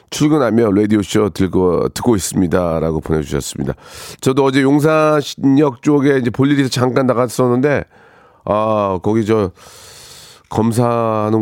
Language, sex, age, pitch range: Korean, male, 40-59, 110-155 Hz